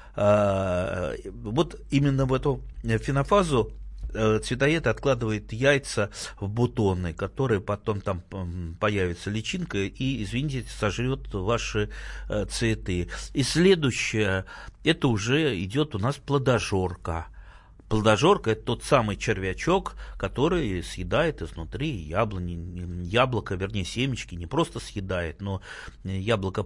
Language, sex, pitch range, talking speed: Russian, male, 100-130 Hz, 100 wpm